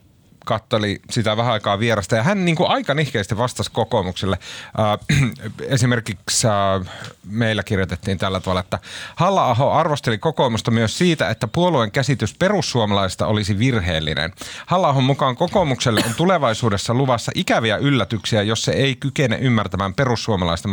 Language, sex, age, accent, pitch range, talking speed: Finnish, male, 30-49, native, 105-135 Hz, 135 wpm